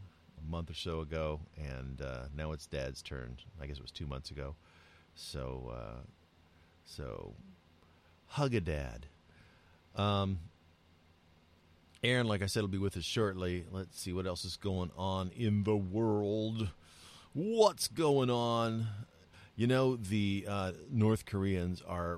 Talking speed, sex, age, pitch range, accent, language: 145 wpm, male, 40-59, 75-90 Hz, American, English